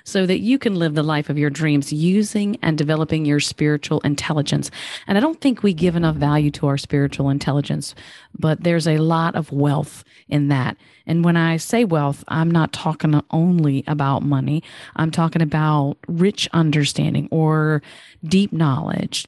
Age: 40-59